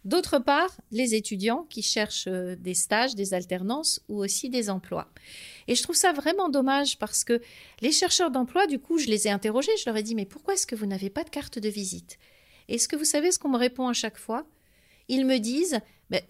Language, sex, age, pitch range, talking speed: French, female, 40-59, 210-280 Hz, 225 wpm